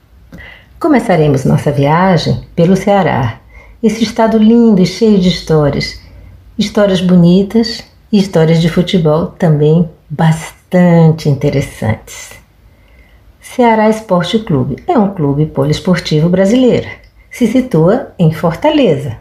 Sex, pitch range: female, 155-235 Hz